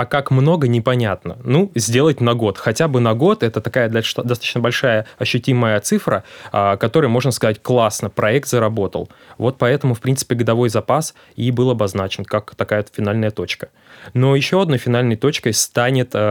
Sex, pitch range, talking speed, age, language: male, 105-125 Hz, 170 wpm, 20-39, Russian